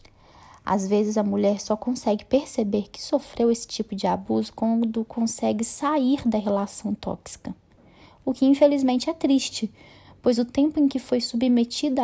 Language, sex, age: Portuguese, female, 10-29